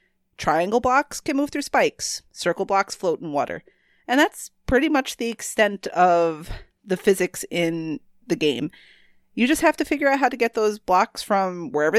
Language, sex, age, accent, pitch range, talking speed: English, female, 30-49, American, 185-260 Hz, 180 wpm